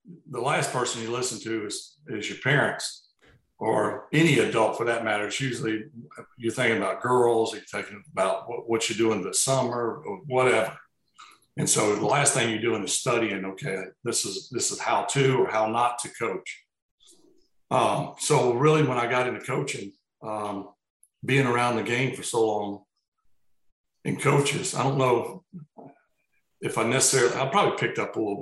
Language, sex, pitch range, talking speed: English, male, 110-145 Hz, 175 wpm